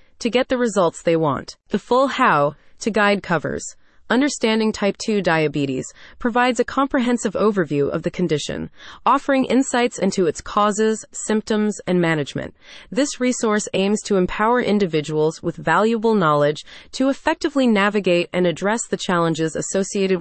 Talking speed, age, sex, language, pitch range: 145 wpm, 30-49, female, English, 170-225 Hz